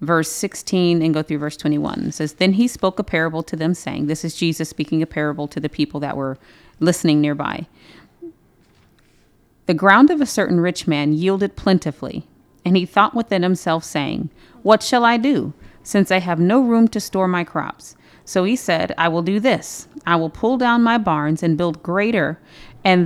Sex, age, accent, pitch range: female, 30-49, American, 165-225 Hz